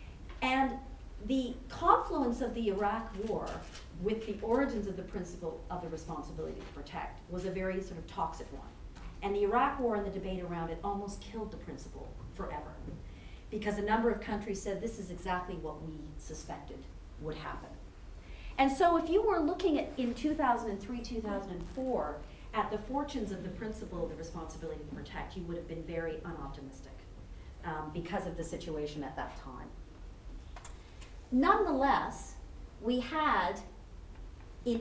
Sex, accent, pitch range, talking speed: female, American, 170-245 Hz, 160 wpm